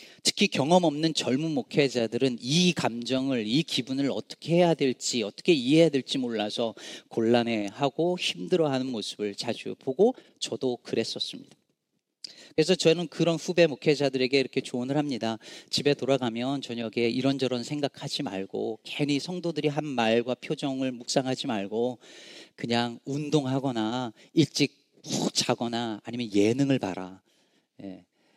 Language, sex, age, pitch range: Korean, male, 40-59, 120-165 Hz